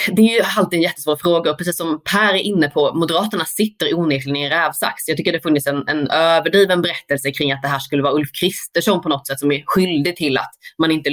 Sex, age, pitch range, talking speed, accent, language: female, 20-39, 145-195 Hz, 245 wpm, native, Swedish